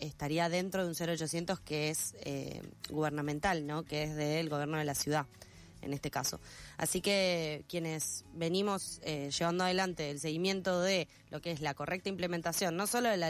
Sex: female